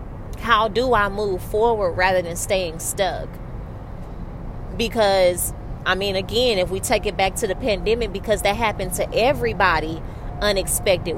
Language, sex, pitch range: English, female, 190-240 Hz